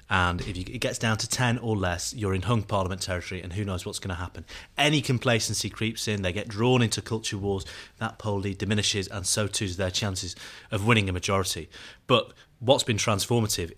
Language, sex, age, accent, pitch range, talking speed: English, male, 30-49, British, 95-110 Hz, 210 wpm